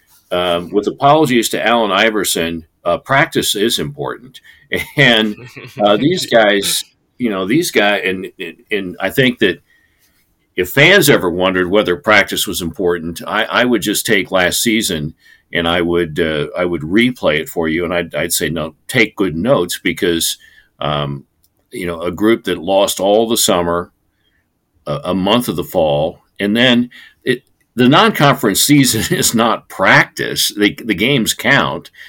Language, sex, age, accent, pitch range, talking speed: English, male, 50-69, American, 95-125 Hz, 165 wpm